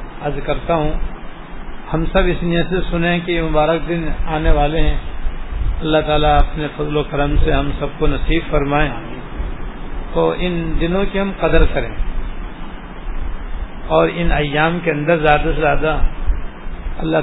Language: English